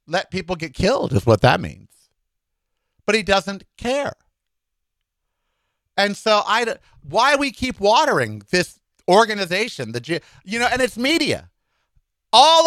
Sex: male